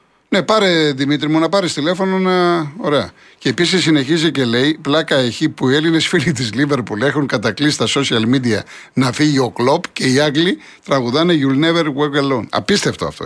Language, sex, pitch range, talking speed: Greek, male, 120-165 Hz, 185 wpm